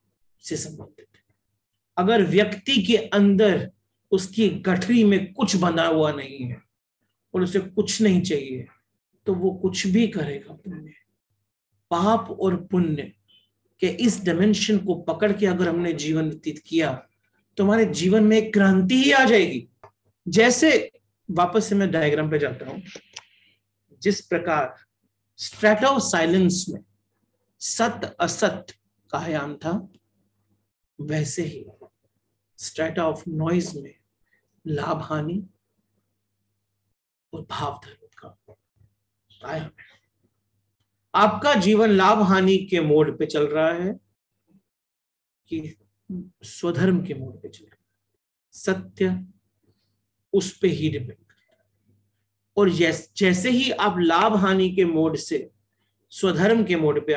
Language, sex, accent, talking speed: Hindi, male, native, 115 wpm